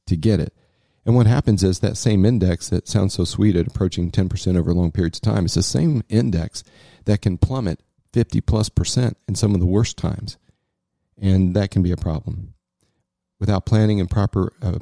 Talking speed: 195 wpm